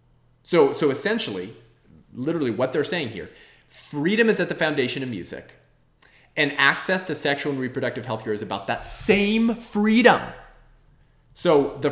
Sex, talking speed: male, 145 wpm